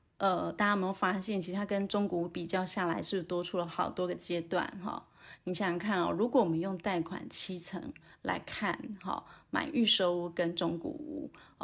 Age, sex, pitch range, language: 30-49, female, 175-220 Hz, Chinese